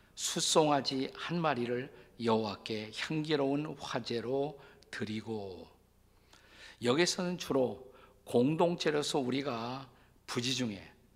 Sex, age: male, 50-69